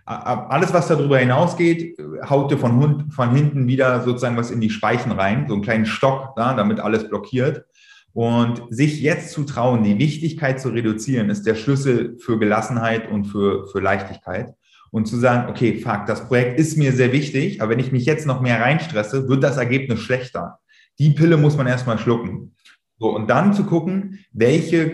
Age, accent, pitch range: 30-49, German, 110-145 Hz